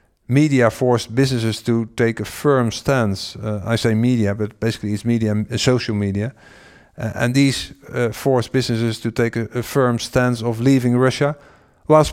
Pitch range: 115-145 Hz